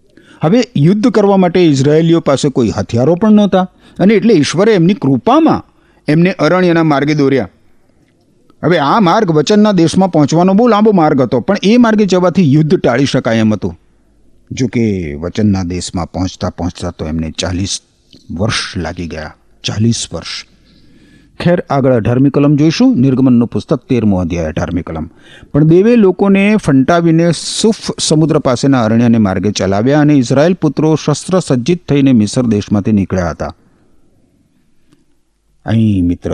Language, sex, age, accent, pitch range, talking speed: Gujarati, male, 50-69, native, 110-175 Hz, 115 wpm